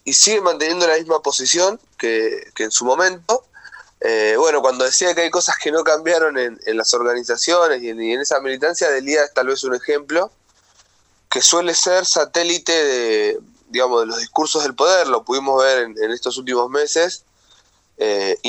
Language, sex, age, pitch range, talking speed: Spanish, male, 20-39, 130-180 Hz, 185 wpm